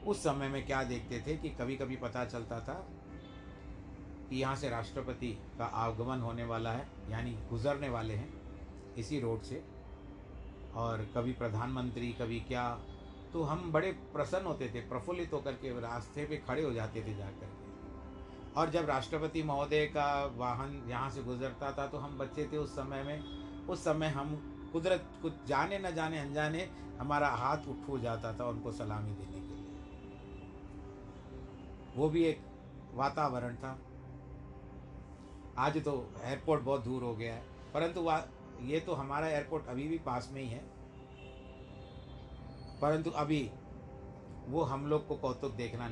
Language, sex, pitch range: Hindi, male, 110-145 Hz